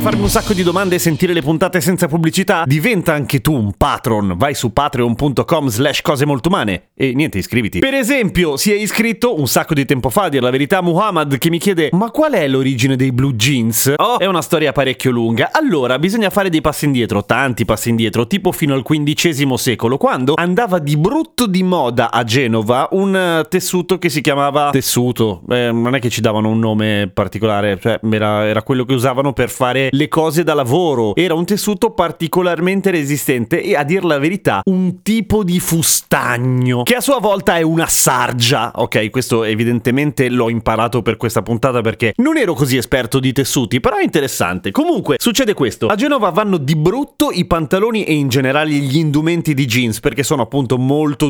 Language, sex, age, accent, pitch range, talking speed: Italian, male, 30-49, native, 125-170 Hz, 195 wpm